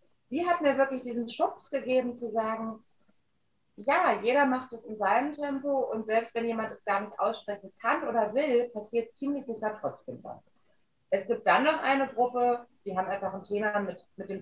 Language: German